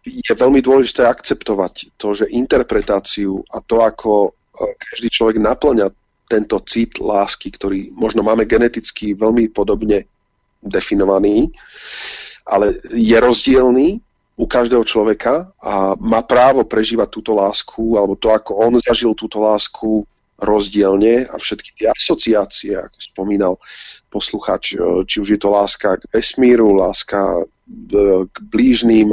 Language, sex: Slovak, male